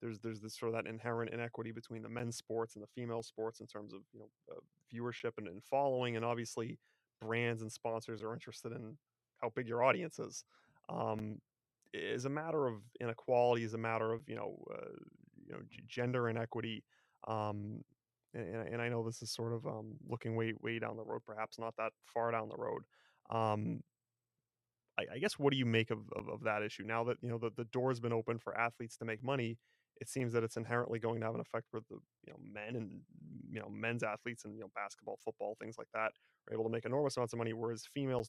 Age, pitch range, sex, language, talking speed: 30-49, 110-120 Hz, male, English, 225 wpm